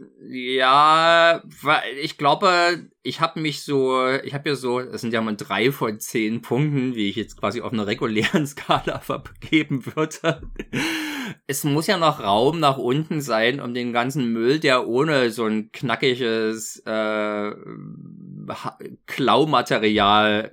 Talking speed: 145 wpm